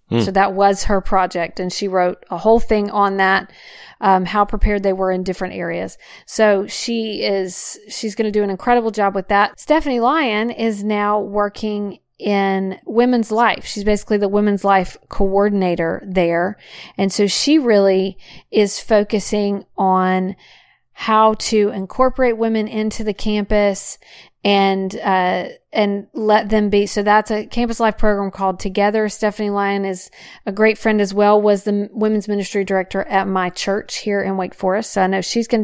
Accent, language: American, English